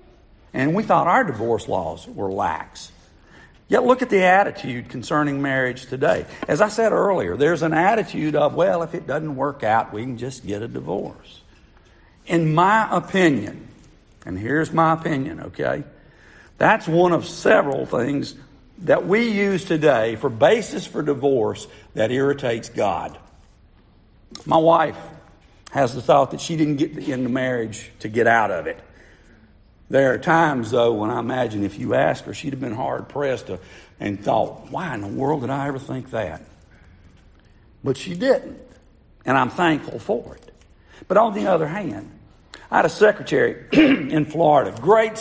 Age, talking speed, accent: 50-69, 160 wpm, American